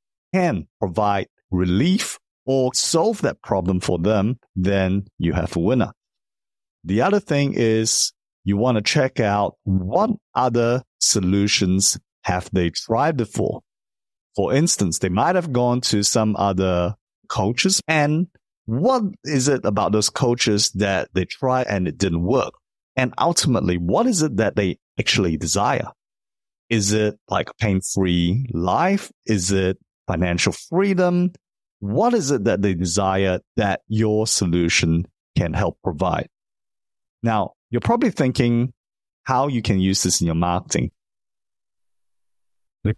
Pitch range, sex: 95-130 Hz, male